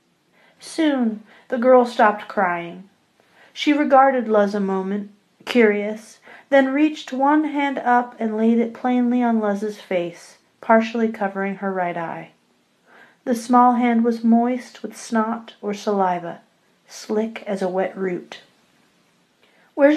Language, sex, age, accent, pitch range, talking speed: English, female, 40-59, American, 205-250 Hz, 130 wpm